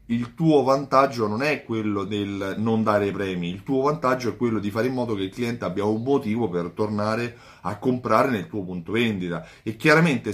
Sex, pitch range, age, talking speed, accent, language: male, 105-130 Hz, 30-49, 205 wpm, native, Italian